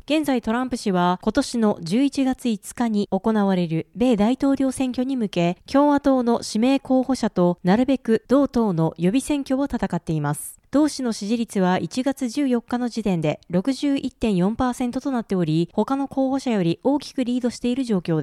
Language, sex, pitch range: Japanese, female, 195-265 Hz